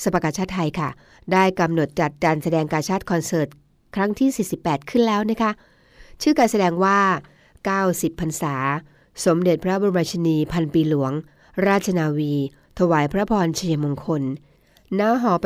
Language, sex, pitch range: Thai, female, 155-190 Hz